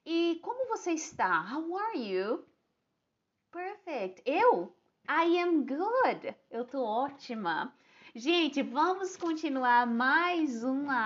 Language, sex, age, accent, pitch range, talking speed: English, female, 20-39, Brazilian, 195-305 Hz, 110 wpm